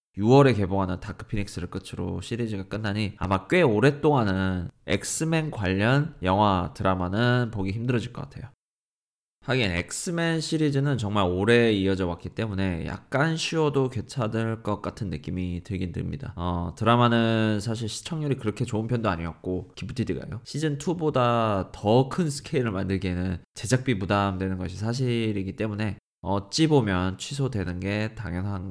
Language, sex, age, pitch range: Korean, male, 20-39, 95-125 Hz